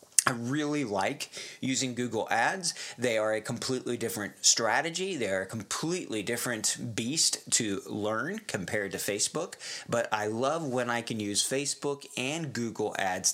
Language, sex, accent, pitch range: English, male, American, 115-150 Hz